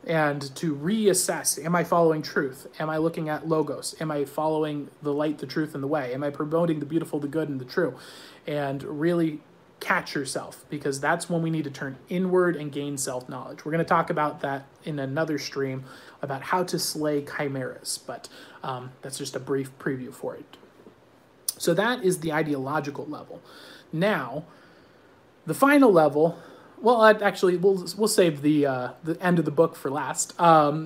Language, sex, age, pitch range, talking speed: English, male, 30-49, 145-190 Hz, 185 wpm